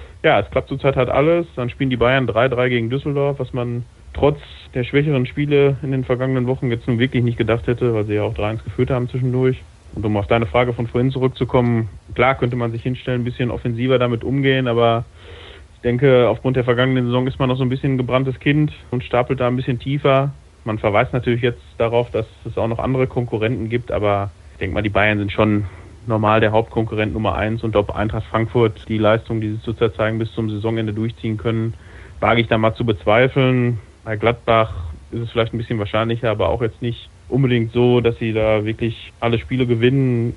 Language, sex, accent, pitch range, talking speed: German, male, German, 110-125 Hz, 215 wpm